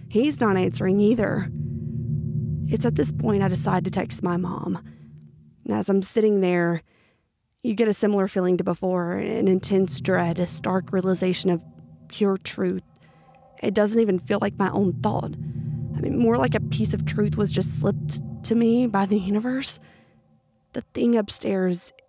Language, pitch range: English, 175-205 Hz